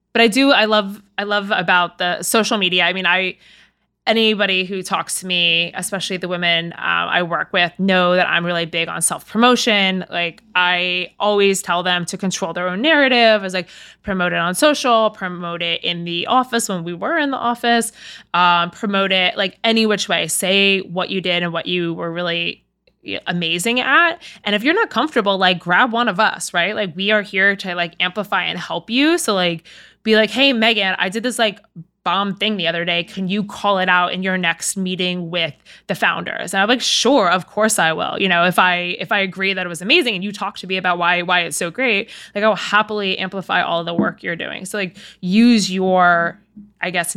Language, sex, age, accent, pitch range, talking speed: English, female, 20-39, American, 175-210 Hz, 220 wpm